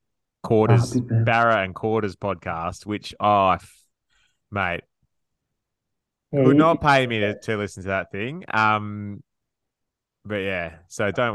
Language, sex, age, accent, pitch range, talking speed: English, male, 20-39, Australian, 95-115 Hz, 120 wpm